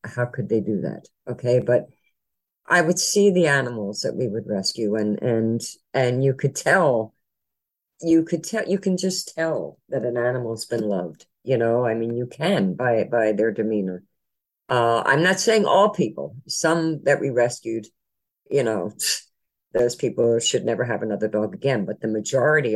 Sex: female